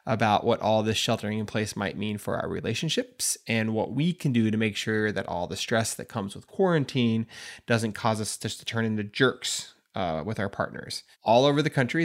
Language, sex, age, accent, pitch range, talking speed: English, male, 20-39, American, 105-125 Hz, 220 wpm